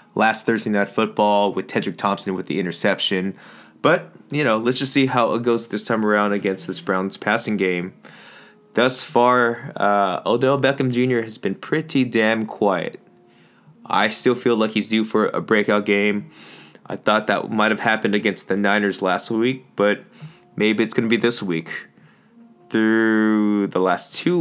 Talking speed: 175 wpm